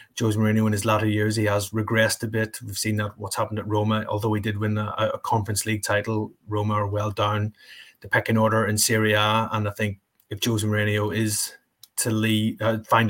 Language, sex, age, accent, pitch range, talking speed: English, male, 30-49, Irish, 105-115 Hz, 220 wpm